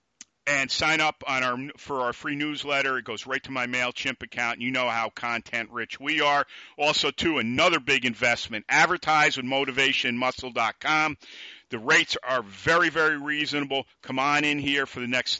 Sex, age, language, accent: male, 50-69, English, American